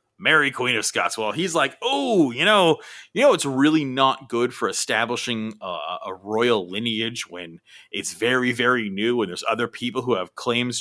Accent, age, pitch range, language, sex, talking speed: American, 30-49, 110-140 Hz, English, male, 190 wpm